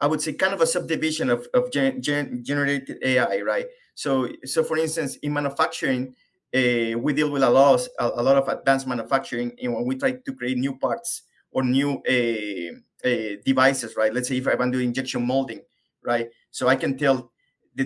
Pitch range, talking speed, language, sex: 125-160 Hz, 200 wpm, English, male